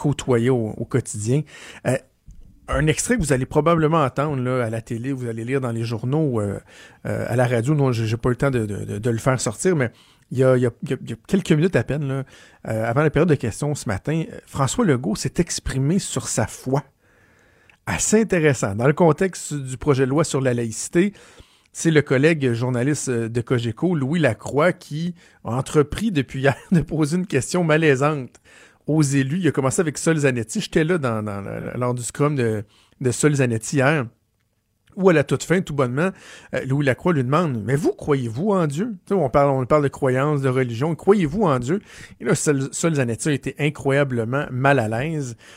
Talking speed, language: 210 wpm, French